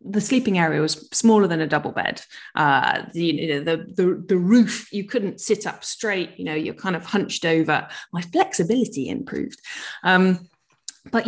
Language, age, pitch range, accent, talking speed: English, 20-39, 165-220 Hz, British, 190 wpm